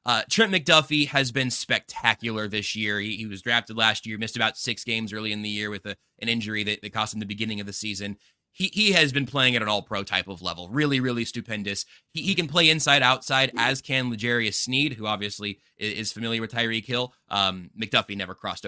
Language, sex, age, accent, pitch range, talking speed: English, male, 20-39, American, 105-145 Hz, 230 wpm